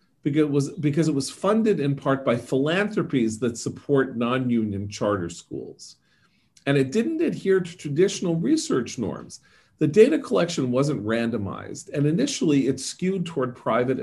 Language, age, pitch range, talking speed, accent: English, 40-59, 130-175 Hz, 140 wpm, American